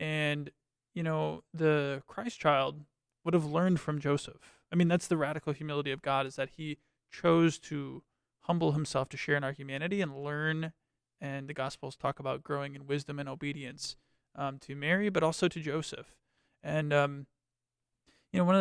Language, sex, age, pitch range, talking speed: English, male, 20-39, 135-160 Hz, 180 wpm